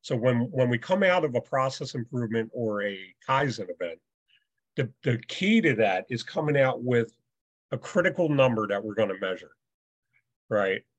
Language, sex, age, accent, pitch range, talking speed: English, male, 40-59, American, 110-140 Hz, 170 wpm